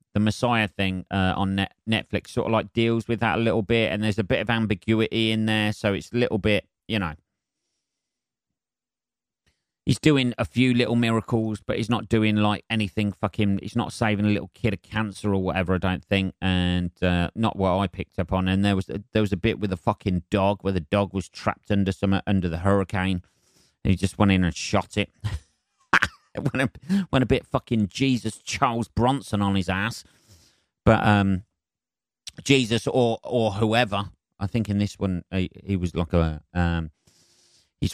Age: 30-49